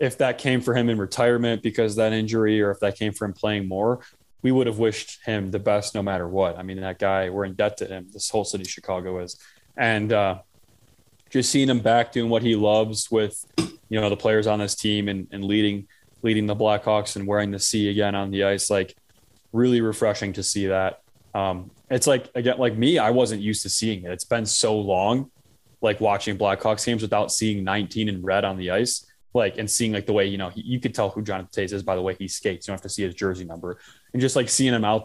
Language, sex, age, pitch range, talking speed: English, male, 20-39, 100-115 Hz, 245 wpm